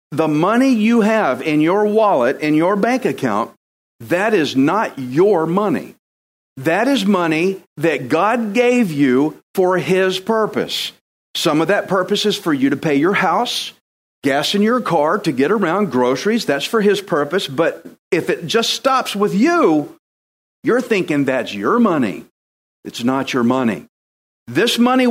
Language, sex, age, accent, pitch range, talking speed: English, male, 50-69, American, 140-225 Hz, 160 wpm